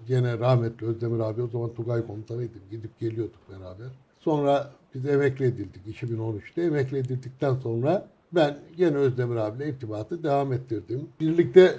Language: Turkish